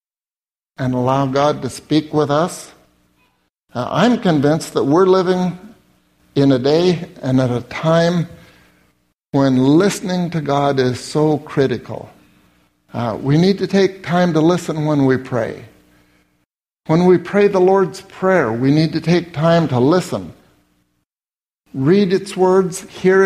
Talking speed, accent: 140 wpm, American